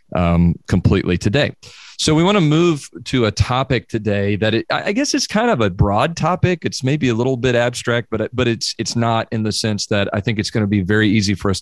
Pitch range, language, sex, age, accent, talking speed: 100-125 Hz, English, male, 40-59, American, 245 wpm